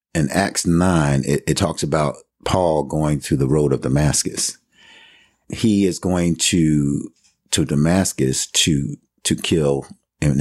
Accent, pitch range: American, 75-90 Hz